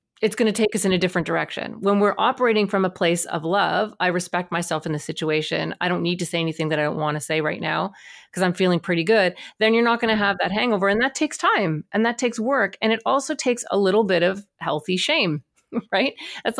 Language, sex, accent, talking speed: English, female, American, 255 wpm